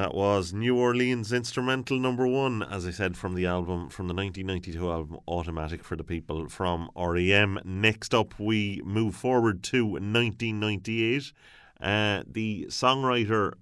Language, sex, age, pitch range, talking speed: English, male, 30-49, 90-115 Hz, 145 wpm